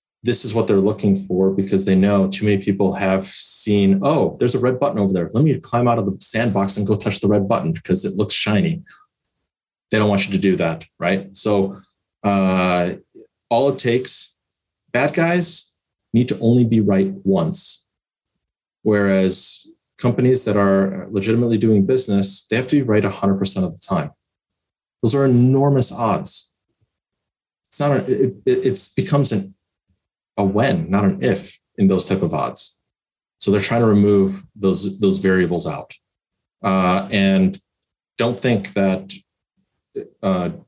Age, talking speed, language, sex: 30-49, 165 wpm, English, male